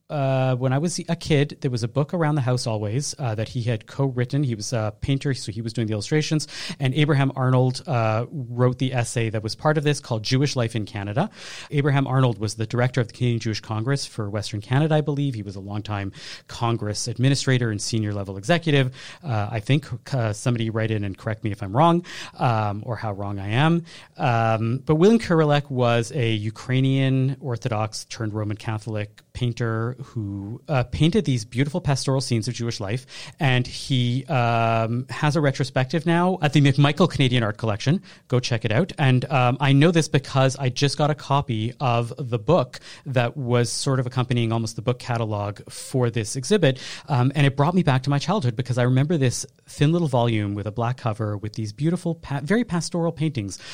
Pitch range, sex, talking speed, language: 115-145 Hz, male, 200 wpm, English